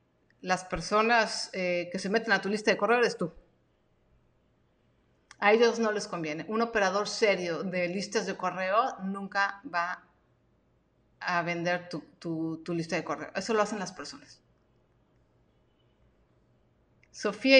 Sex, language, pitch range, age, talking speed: female, Spanish, 180-240 Hz, 30-49, 140 wpm